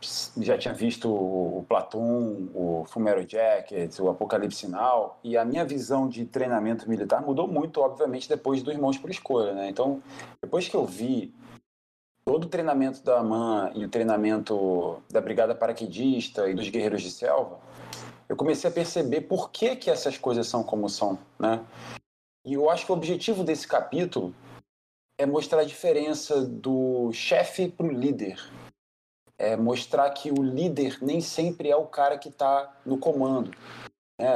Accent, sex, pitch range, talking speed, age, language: Brazilian, male, 115-145 Hz, 160 wpm, 20-39, Portuguese